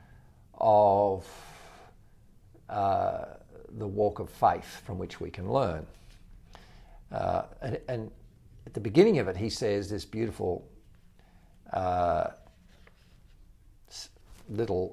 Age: 50-69